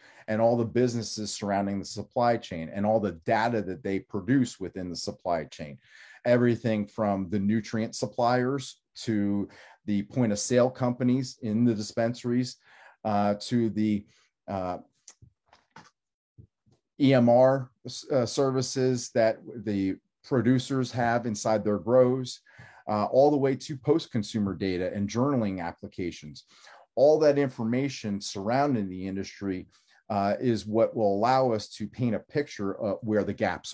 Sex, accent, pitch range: male, American, 100-125 Hz